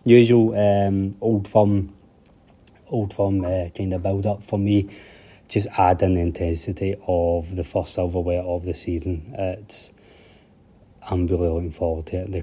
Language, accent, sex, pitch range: English, British, male, 90-105 Hz